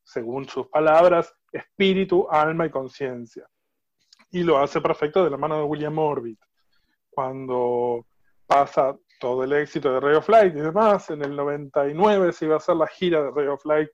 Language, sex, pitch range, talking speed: Spanish, male, 135-175 Hz, 175 wpm